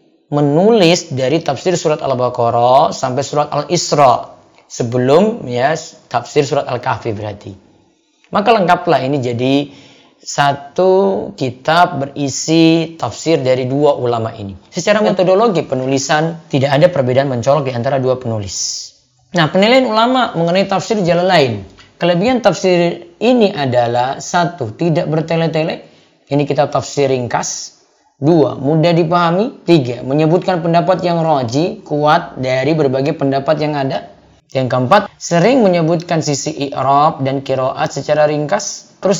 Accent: native